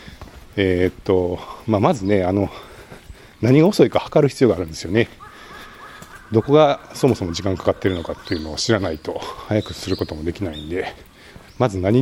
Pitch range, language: 90-115 Hz, Japanese